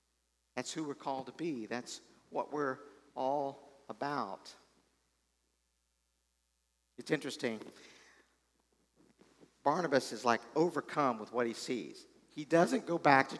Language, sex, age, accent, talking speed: English, male, 50-69, American, 115 wpm